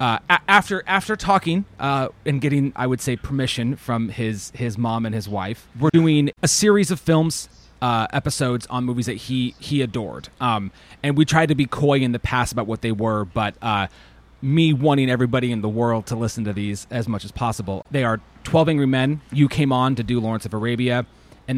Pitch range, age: 115-140 Hz, 30-49